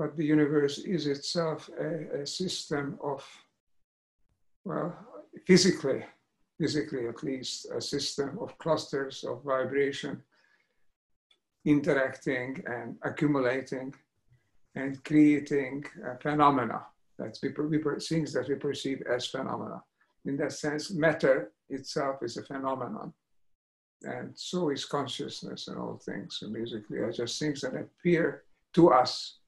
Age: 60-79